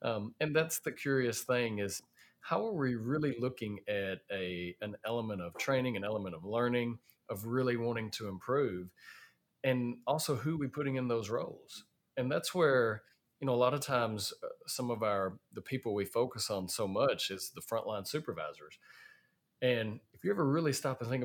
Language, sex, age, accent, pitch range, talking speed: English, male, 40-59, American, 105-130 Hz, 190 wpm